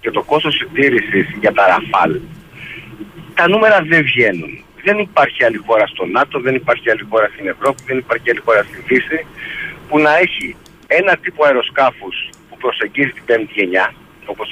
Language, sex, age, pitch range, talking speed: Greek, male, 60-79, 120-180 Hz, 170 wpm